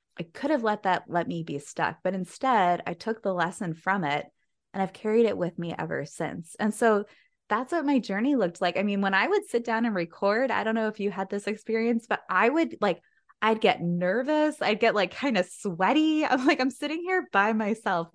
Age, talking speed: 20-39, 230 wpm